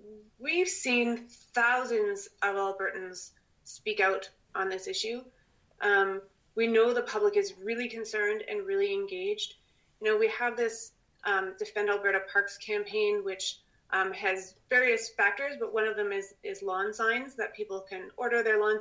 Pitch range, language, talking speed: 205-265 Hz, English, 160 wpm